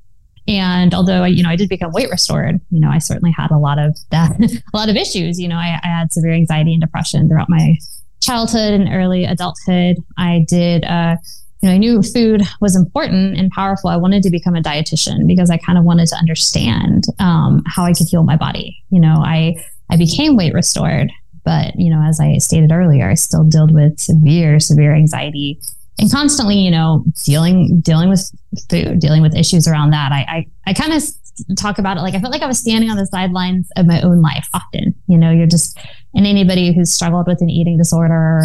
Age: 20-39